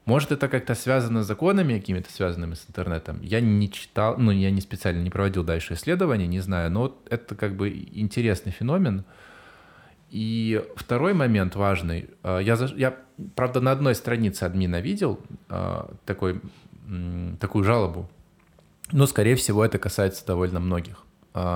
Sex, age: male, 20-39